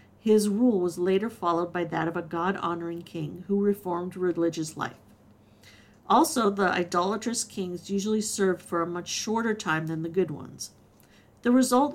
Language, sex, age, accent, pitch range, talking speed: English, female, 50-69, American, 170-215 Hz, 160 wpm